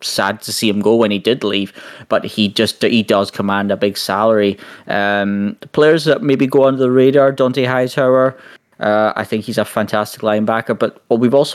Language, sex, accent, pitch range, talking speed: English, male, British, 100-130 Hz, 215 wpm